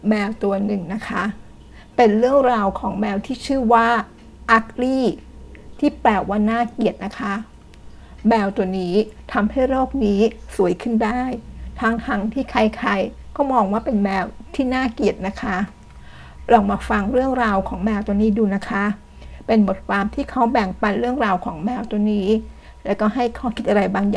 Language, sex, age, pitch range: Thai, female, 60-79, 195-240 Hz